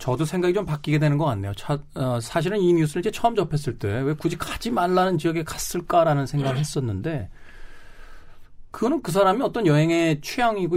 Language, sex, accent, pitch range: Korean, male, native, 120-165 Hz